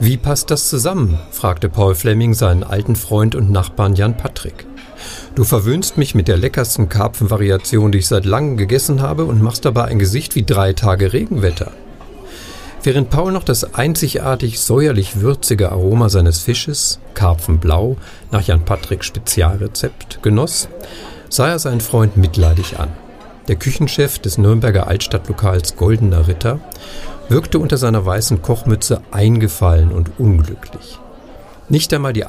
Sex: male